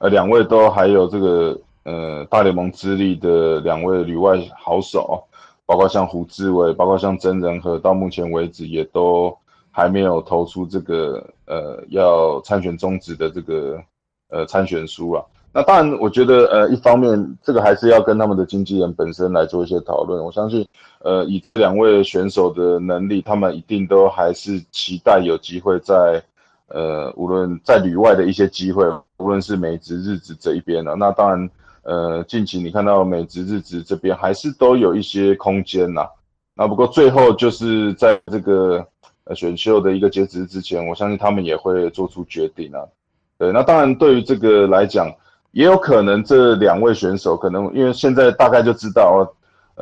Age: 20-39